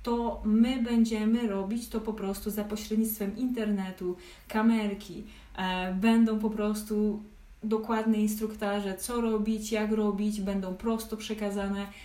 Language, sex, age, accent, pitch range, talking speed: Polish, female, 20-39, native, 195-220 Hz, 115 wpm